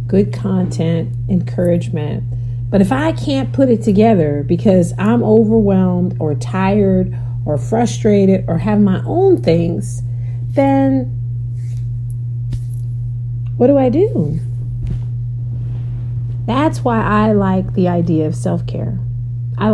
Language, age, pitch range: English, 40-59, 115-125 Hz